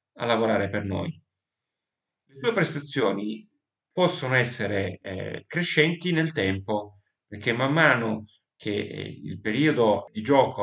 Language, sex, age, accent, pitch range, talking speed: Italian, male, 30-49, native, 105-140 Hz, 120 wpm